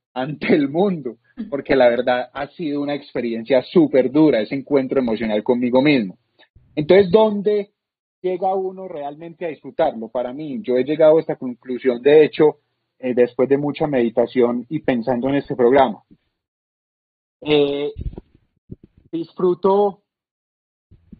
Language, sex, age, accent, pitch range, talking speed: Spanish, male, 30-49, Colombian, 130-165 Hz, 130 wpm